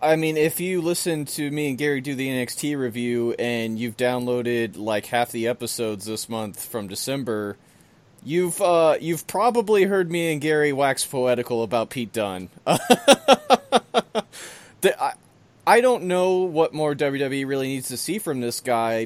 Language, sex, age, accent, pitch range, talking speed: English, male, 30-49, American, 115-150 Hz, 165 wpm